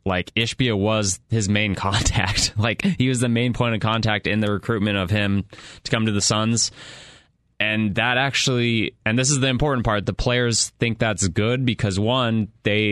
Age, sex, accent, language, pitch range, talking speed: 20-39, male, American, English, 100-115 Hz, 190 wpm